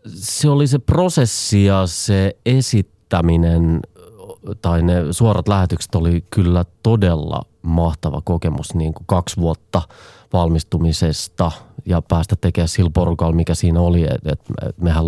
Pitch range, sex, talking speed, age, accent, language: 85-100 Hz, male, 110 wpm, 30-49, native, Finnish